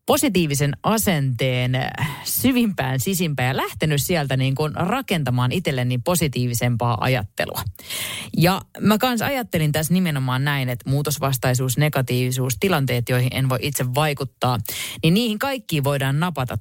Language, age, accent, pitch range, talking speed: Finnish, 30-49, native, 125-180 Hz, 125 wpm